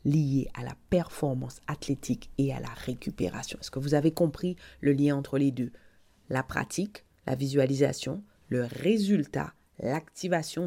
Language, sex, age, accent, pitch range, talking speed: French, female, 30-49, French, 130-170 Hz, 145 wpm